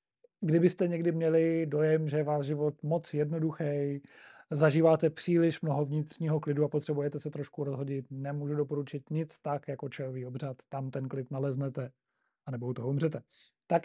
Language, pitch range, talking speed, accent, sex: Czech, 145-165 Hz, 155 wpm, native, male